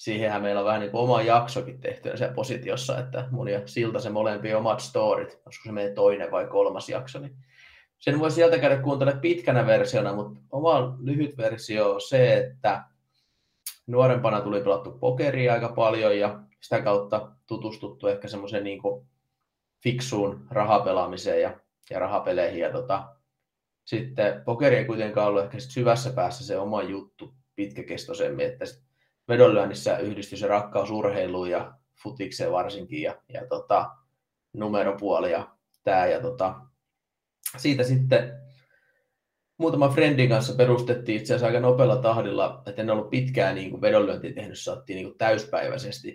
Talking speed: 140 wpm